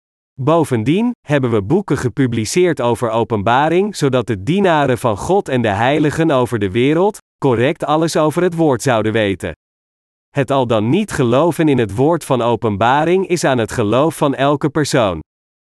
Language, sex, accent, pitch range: Dutch, male, Dutch, 120-165 Hz